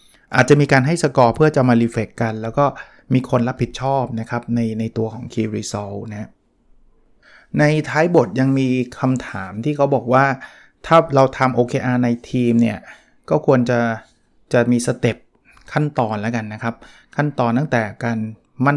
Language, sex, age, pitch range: Thai, male, 20-39, 115-135 Hz